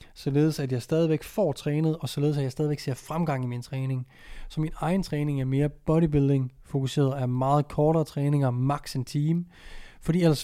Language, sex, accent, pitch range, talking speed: Danish, male, native, 130-155 Hz, 185 wpm